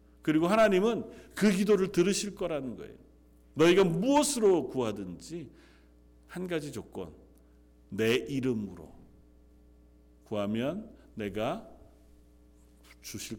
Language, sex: Korean, male